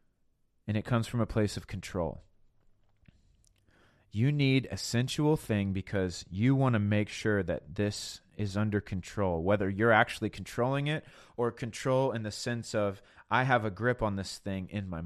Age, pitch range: 30-49, 95-120 Hz